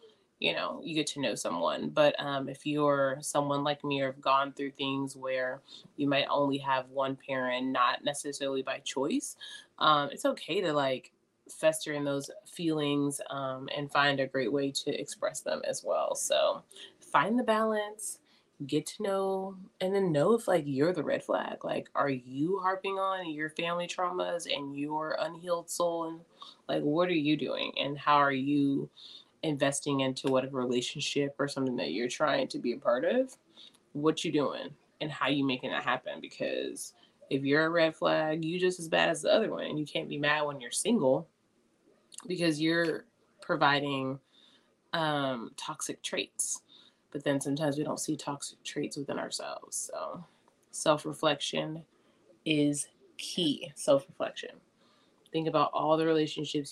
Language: English